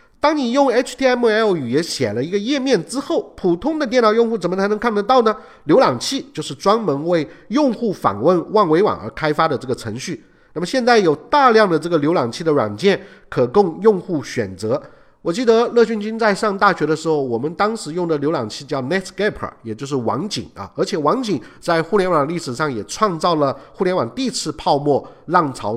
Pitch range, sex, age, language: 155-220 Hz, male, 50-69, Chinese